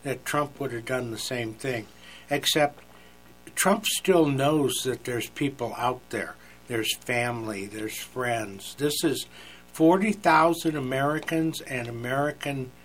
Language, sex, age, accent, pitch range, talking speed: English, male, 60-79, American, 110-165 Hz, 125 wpm